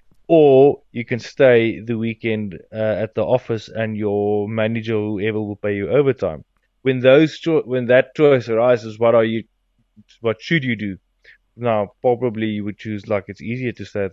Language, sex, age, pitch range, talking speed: English, male, 20-39, 100-120 Hz, 185 wpm